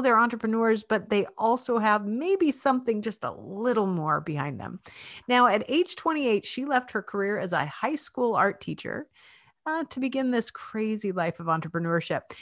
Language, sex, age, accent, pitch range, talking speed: English, female, 50-69, American, 170-240 Hz, 175 wpm